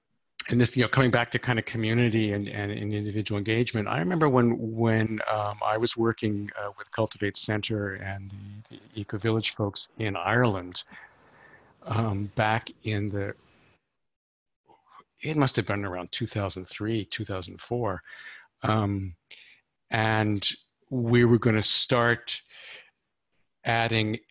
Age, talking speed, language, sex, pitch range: 50-69, 135 wpm, English, male, 100-125 Hz